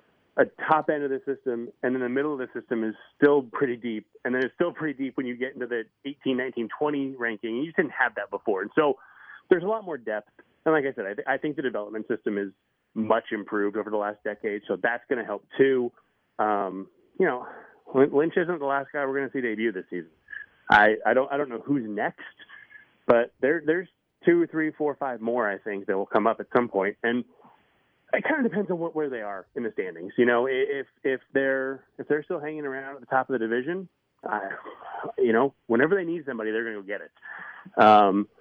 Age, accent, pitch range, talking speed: 30-49, American, 115-155 Hz, 235 wpm